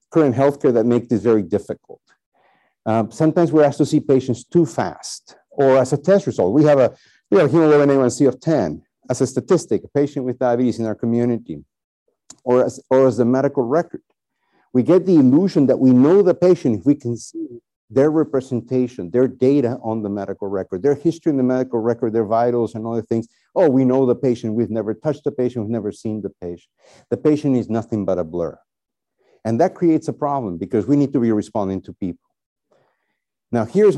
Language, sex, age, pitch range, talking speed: English, male, 50-69, 115-155 Hz, 205 wpm